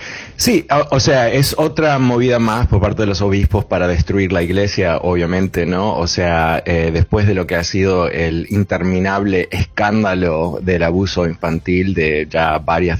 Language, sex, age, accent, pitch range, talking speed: Spanish, male, 30-49, Argentinian, 90-110 Hz, 165 wpm